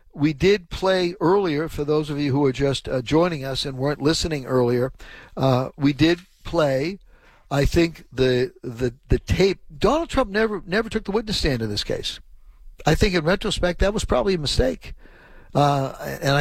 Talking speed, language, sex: 185 wpm, English, male